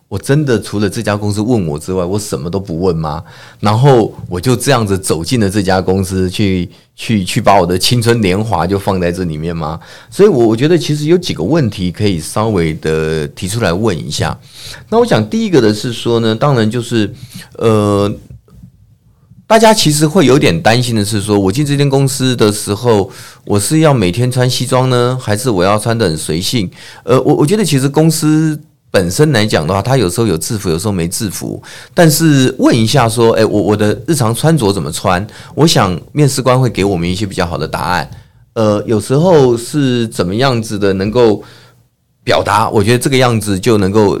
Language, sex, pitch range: Chinese, male, 100-130 Hz